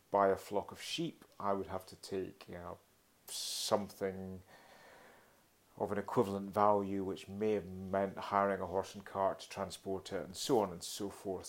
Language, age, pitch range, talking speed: English, 40-59, 95-105 Hz, 170 wpm